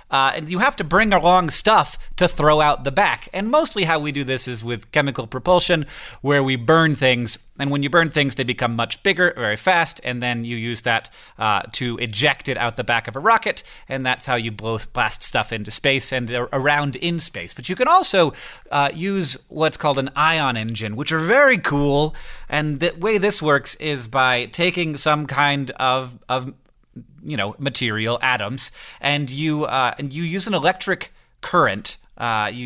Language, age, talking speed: English, 30-49, 195 wpm